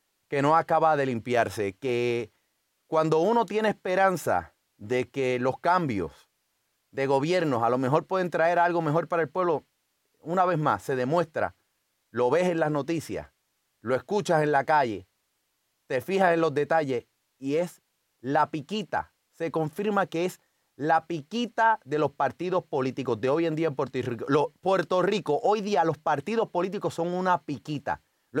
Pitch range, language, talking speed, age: 150-200 Hz, Spanish, 165 wpm, 30-49